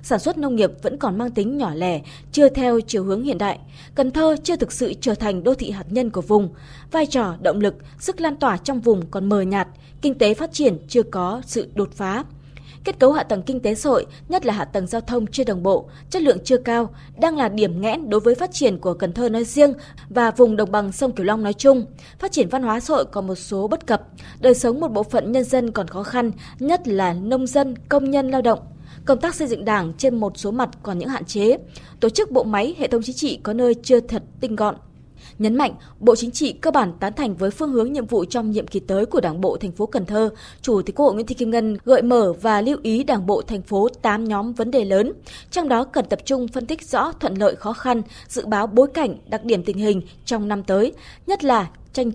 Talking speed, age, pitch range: 255 wpm, 20-39, 205-260 Hz